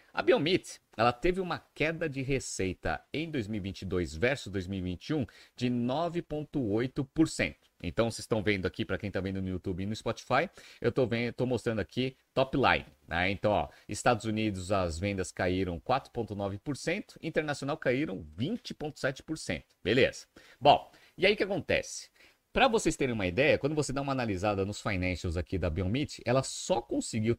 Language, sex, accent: Portuguese, male, Brazilian